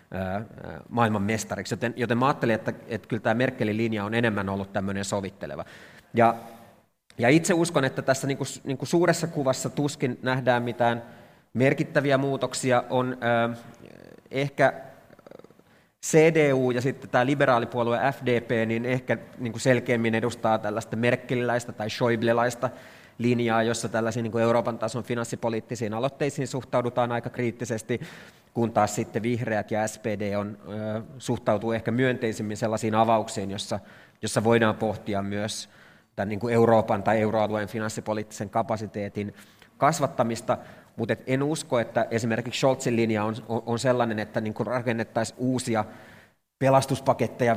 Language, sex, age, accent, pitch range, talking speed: Finnish, male, 30-49, native, 110-125 Hz, 130 wpm